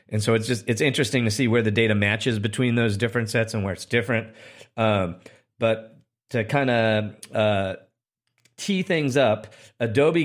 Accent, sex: American, male